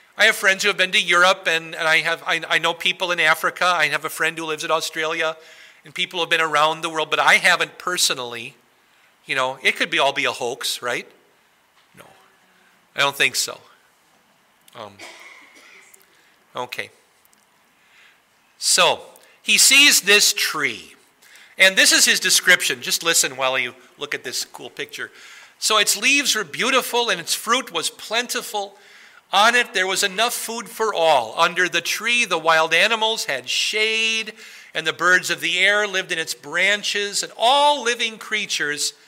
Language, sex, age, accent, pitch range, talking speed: English, male, 50-69, American, 160-220 Hz, 175 wpm